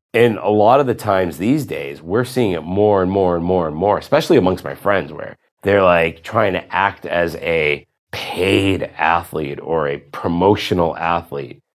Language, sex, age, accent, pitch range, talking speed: English, male, 30-49, American, 105-155 Hz, 185 wpm